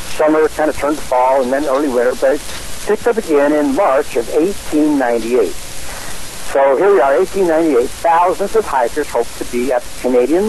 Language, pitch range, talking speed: English, 125-175 Hz, 190 wpm